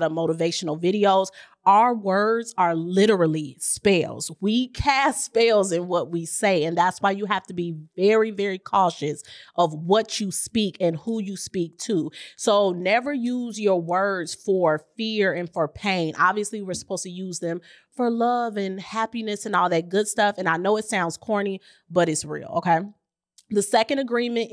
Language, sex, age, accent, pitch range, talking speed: English, female, 30-49, American, 180-230 Hz, 175 wpm